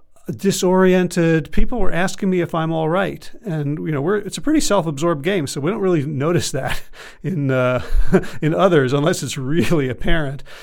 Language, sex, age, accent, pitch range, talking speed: English, male, 40-59, American, 140-175 Hz, 180 wpm